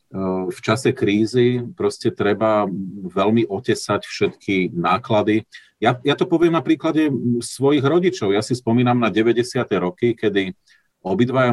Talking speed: 130 wpm